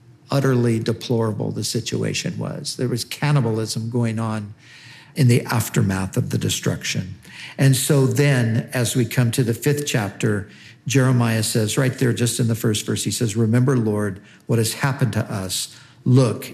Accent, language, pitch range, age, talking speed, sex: American, English, 120-145 Hz, 50-69, 165 wpm, male